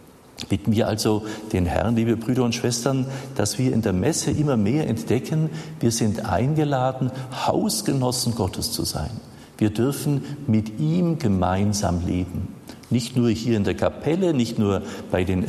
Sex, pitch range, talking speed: male, 105-130 Hz, 155 wpm